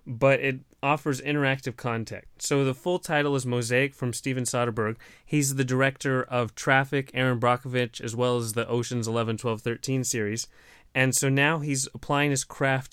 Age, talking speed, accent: 30-49, 170 wpm, American